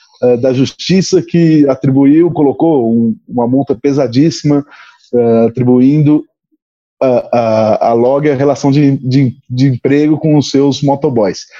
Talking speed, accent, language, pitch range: 130 wpm, Brazilian, Portuguese, 130-185 Hz